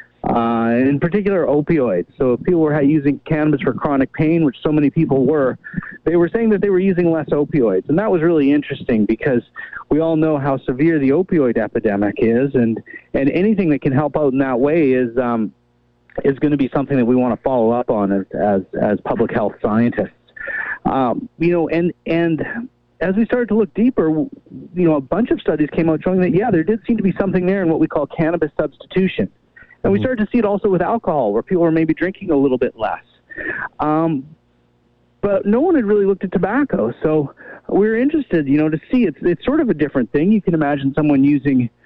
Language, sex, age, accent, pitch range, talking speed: English, male, 40-59, American, 135-185 Hz, 220 wpm